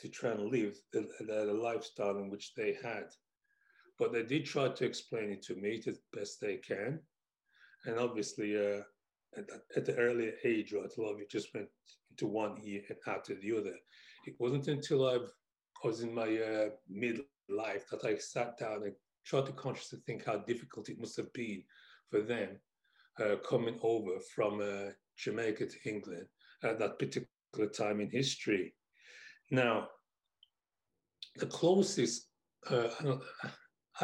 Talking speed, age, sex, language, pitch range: 165 wpm, 40-59, male, English, 115-150 Hz